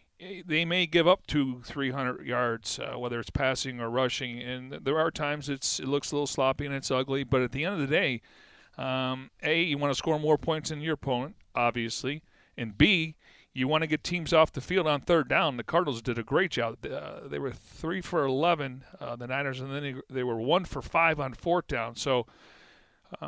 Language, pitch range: English, 130-155 Hz